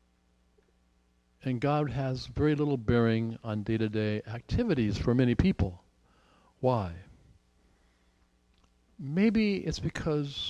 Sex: male